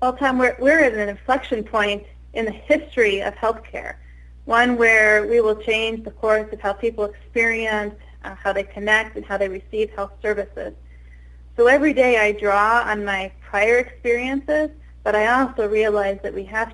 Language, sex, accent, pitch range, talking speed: English, female, American, 195-230 Hz, 180 wpm